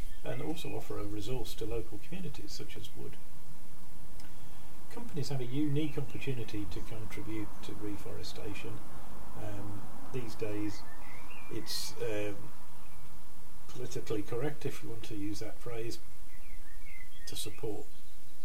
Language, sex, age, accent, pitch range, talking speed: English, male, 40-59, British, 95-120 Hz, 115 wpm